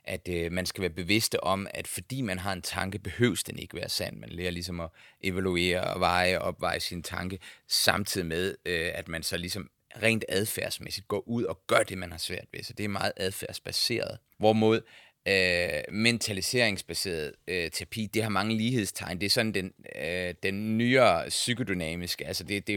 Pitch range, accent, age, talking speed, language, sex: 90-110 Hz, native, 30-49, 190 wpm, Danish, male